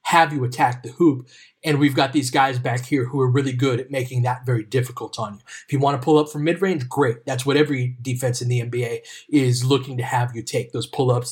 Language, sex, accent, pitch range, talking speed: English, male, American, 125-150 Hz, 250 wpm